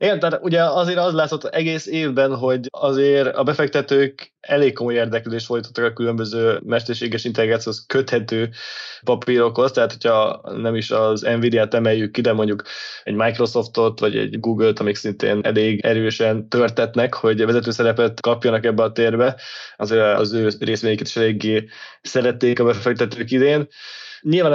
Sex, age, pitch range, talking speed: male, 20-39, 110-130 Hz, 145 wpm